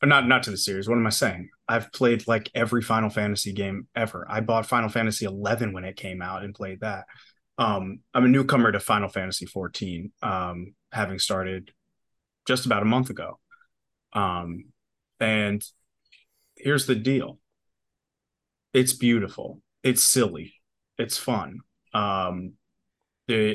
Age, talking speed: 30-49, 150 wpm